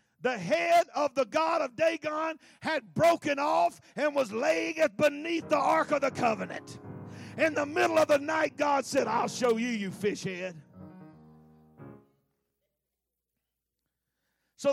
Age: 50-69